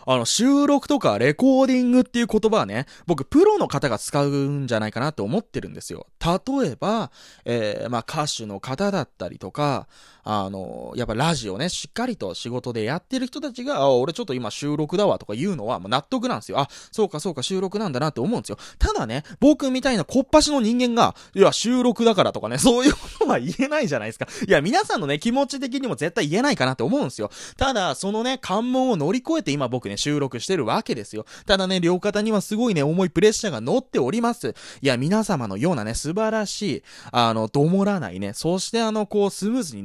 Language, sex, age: Japanese, male, 20-39